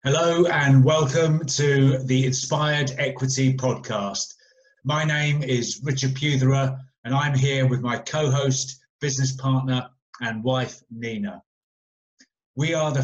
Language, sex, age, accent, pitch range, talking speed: English, male, 30-49, British, 125-140 Hz, 125 wpm